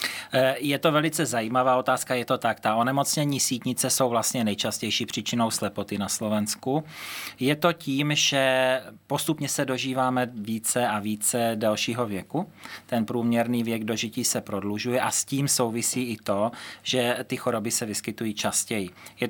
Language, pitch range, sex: Slovak, 110-125 Hz, male